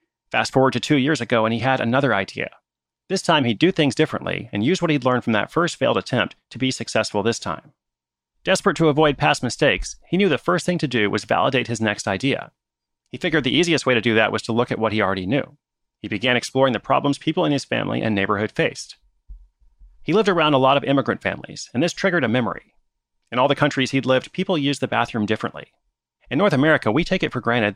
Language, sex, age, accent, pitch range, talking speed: English, male, 30-49, American, 110-145 Hz, 235 wpm